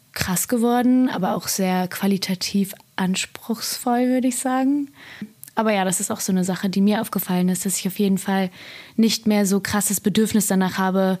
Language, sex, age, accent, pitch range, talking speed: German, female, 20-39, German, 190-220 Hz, 180 wpm